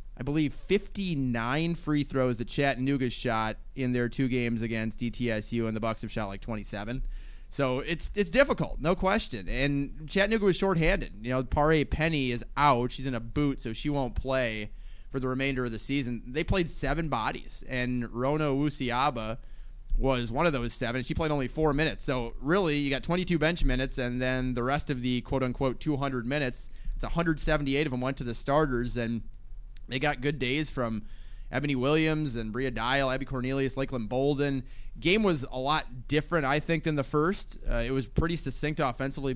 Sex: male